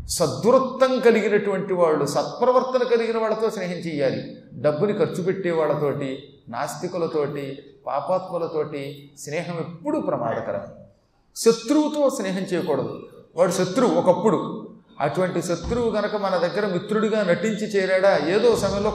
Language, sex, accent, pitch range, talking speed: Telugu, male, native, 165-215 Hz, 100 wpm